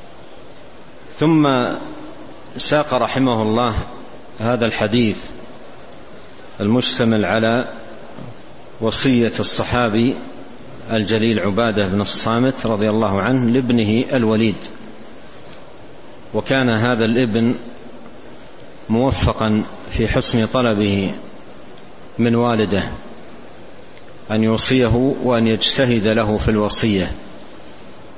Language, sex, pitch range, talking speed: Arabic, male, 110-125 Hz, 75 wpm